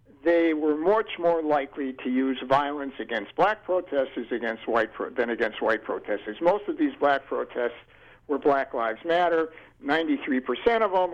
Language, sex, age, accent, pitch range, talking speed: English, male, 60-79, American, 135-210 Hz, 165 wpm